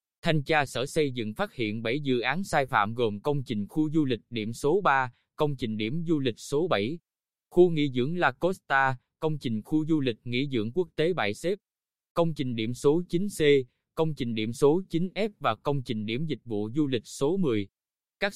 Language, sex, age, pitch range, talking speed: Vietnamese, male, 20-39, 120-160 Hz, 210 wpm